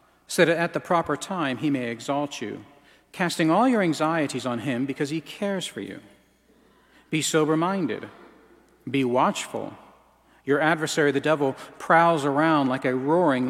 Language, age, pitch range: English, 40-59, 130-165 Hz